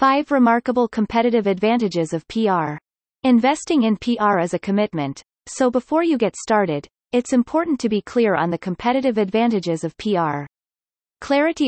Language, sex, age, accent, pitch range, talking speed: English, female, 30-49, American, 180-250 Hz, 150 wpm